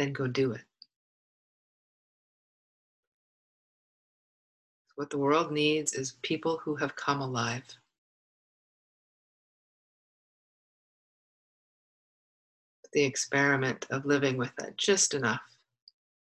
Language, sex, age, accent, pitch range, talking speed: English, female, 50-69, American, 120-150 Hz, 80 wpm